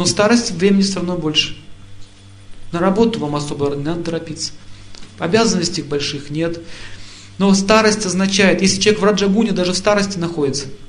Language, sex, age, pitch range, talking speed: Russian, male, 40-59, 120-185 Hz, 150 wpm